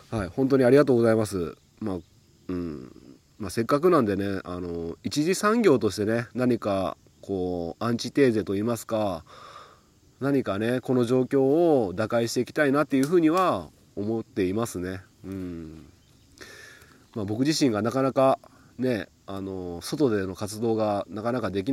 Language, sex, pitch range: Japanese, male, 100-135 Hz